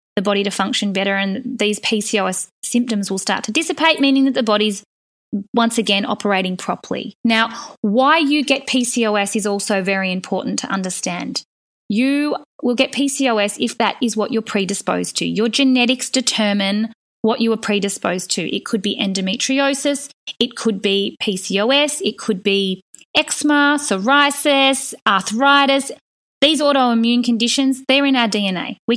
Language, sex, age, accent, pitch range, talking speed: English, female, 20-39, Australian, 200-260 Hz, 150 wpm